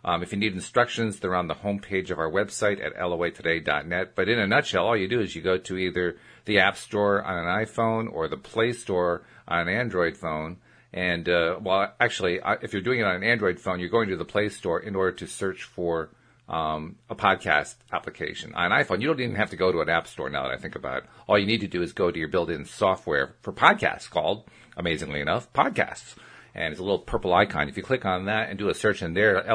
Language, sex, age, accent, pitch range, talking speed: English, male, 40-59, American, 90-120 Hz, 240 wpm